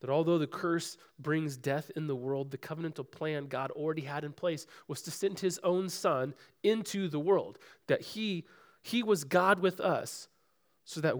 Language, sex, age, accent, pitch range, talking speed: English, male, 30-49, American, 145-195 Hz, 190 wpm